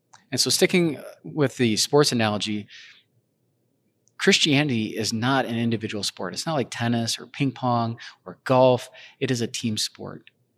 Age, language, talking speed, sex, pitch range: 30-49, English, 155 wpm, male, 105-130 Hz